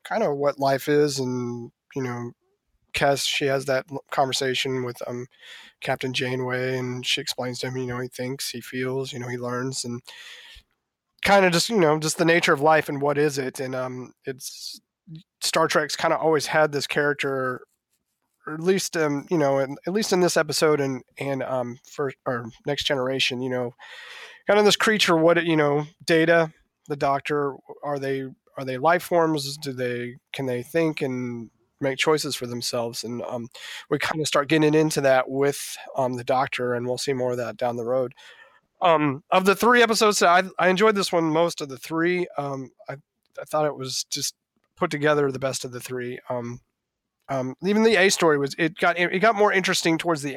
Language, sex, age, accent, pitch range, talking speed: English, male, 30-49, American, 130-165 Hz, 205 wpm